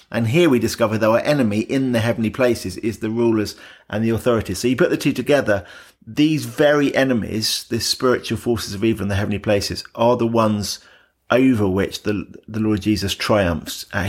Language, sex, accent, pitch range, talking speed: English, male, British, 100-120 Hz, 195 wpm